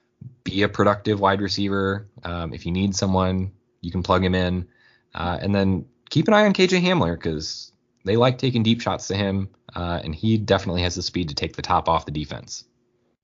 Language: English